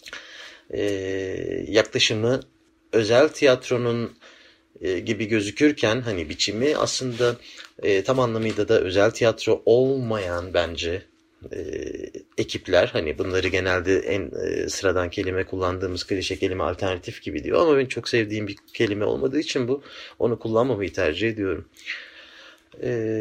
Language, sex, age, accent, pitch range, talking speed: Turkish, male, 30-49, native, 100-135 Hz, 125 wpm